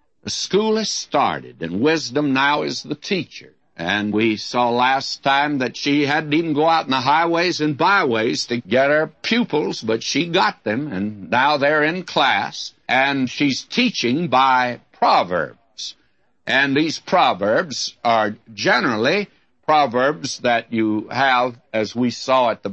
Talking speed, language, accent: 155 wpm, English, American